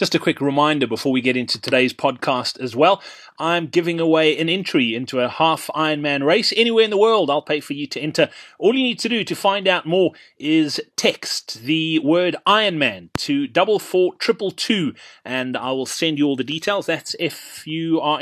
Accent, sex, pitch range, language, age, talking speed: British, male, 140-190 Hz, English, 30-49, 200 wpm